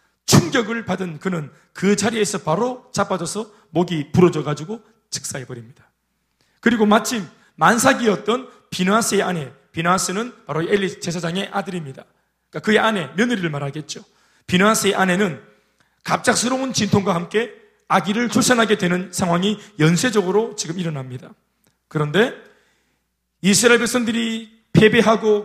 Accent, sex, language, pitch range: native, male, Korean, 175-235 Hz